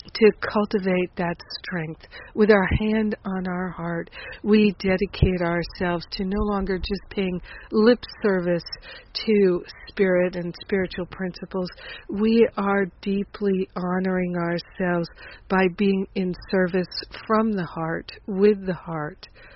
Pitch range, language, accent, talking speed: 175-200 Hz, English, American, 125 wpm